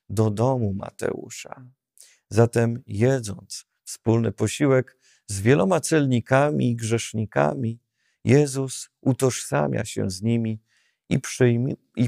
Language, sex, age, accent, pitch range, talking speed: Polish, male, 50-69, native, 105-135 Hz, 90 wpm